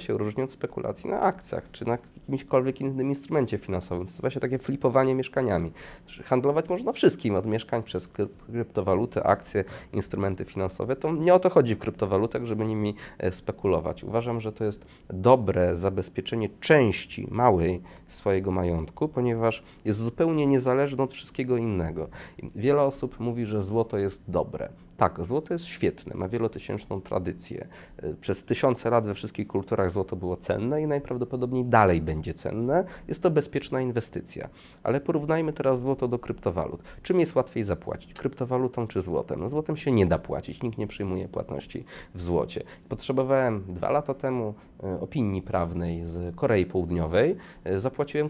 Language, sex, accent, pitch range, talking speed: Polish, male, native, 95-135 Hz, 150 wpm